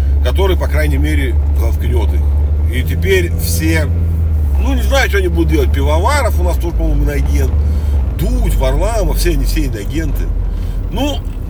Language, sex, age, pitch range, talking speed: Russian, male, 40-59, 75-90 Hz, 145 wpm